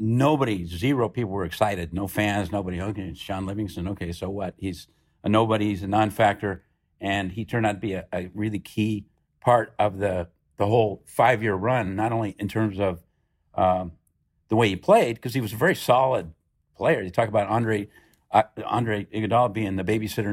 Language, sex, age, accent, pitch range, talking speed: English, male, 50-69, American, 95-115 Hz, 190 wpm